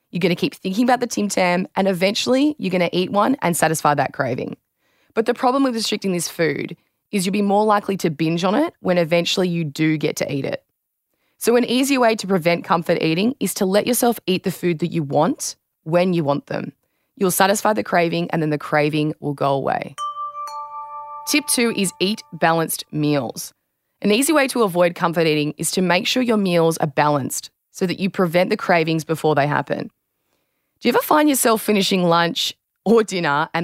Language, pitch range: English, 160-220 Hz